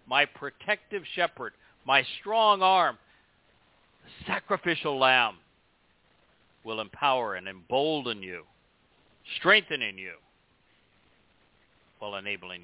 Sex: male